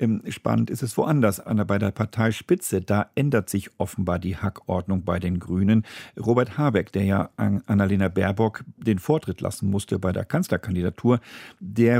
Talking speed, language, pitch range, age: 155 wpm, German, 95-115 Hz, 50-69